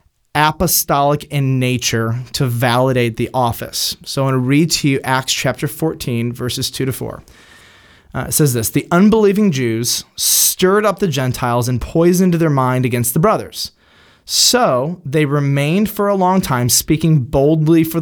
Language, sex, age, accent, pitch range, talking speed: English, male, 30-49, American, 120-155 Hz, 160 wpm